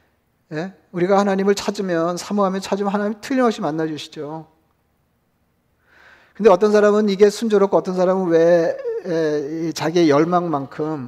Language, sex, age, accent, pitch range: Korean, male, 40-59, native, 160-190 Hz